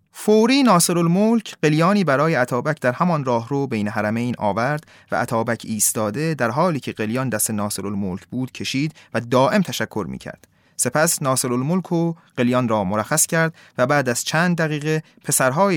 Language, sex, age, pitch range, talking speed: Persian, male, 30-49, 125-165 Hz, 155 wpm